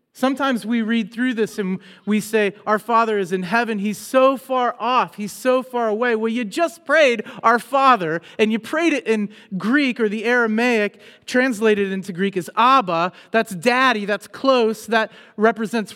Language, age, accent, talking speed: English, 40-59, American, 175 wpm